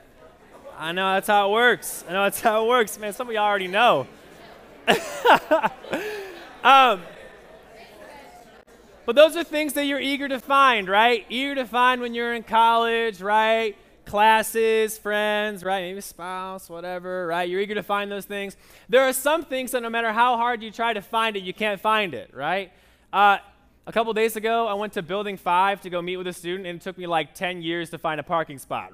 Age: 20-39